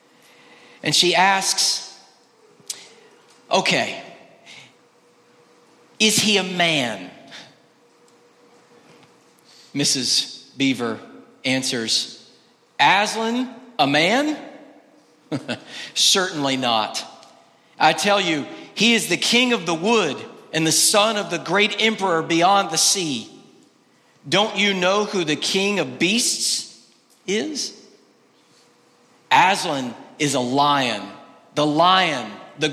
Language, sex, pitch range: English, male, 140-205 Hz